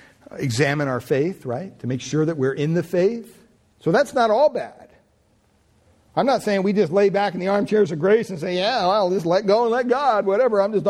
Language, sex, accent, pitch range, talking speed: English, male, American, 150-200 Hz, 230 wpm